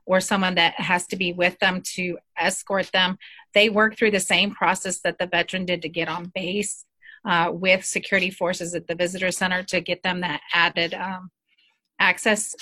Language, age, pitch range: English, 30-49, 180-205 Hz